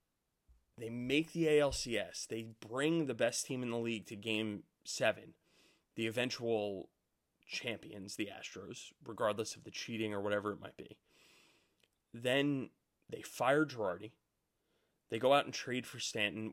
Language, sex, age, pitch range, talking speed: English, male, 30-49, 110-125 Hz, 145 wpm